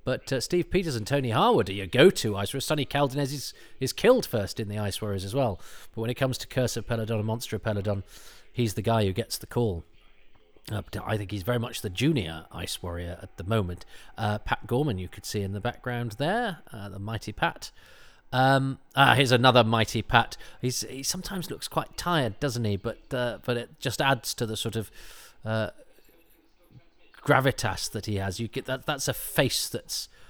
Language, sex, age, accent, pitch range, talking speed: English, male, 40-59, British, 100-130 Hz, 210 wpm